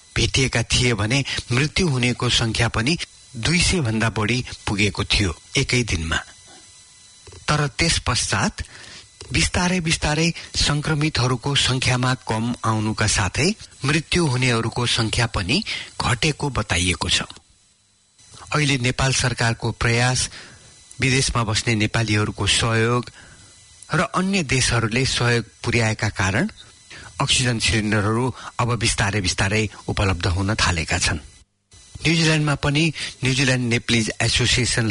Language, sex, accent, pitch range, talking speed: English, male, Indian, 100-125 Hz, 95 wpm